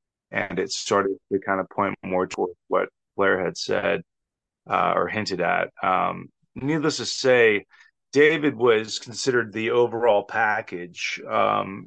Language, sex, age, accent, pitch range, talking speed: English, male, 30-49, American, 100-125 Hz, 140 wpm